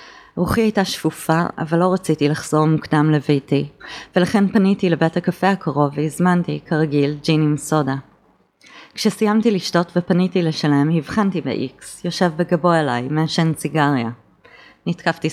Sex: female